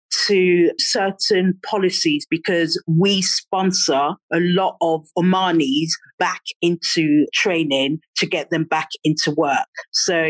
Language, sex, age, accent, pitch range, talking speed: English, female, 40-59, British, 165-215 Hz, 115 wpm